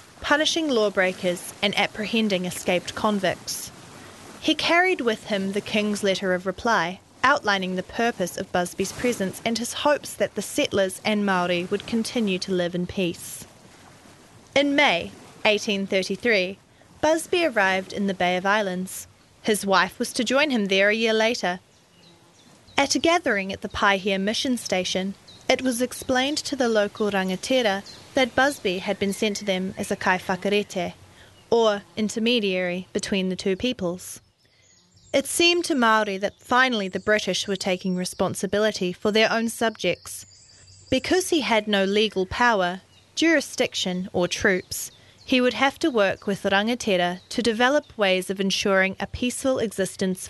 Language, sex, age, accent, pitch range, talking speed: English, female, 30-49, Australian, 185-235 Hz, 150 wpm